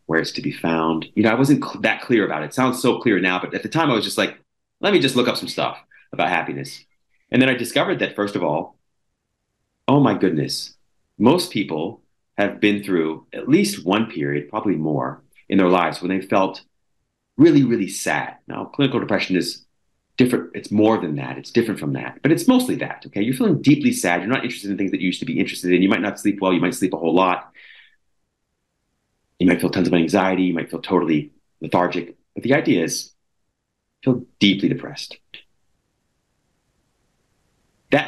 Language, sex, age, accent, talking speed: English, male, 30-49, American, 205 wpm